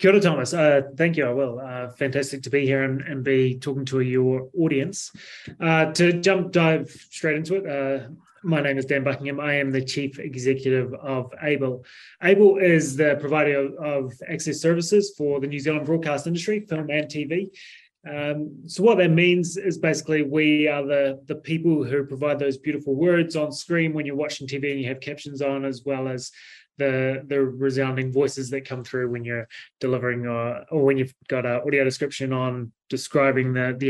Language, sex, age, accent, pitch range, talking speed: English, male, 20-39, Australian, 135-160 Hz, 195 wpm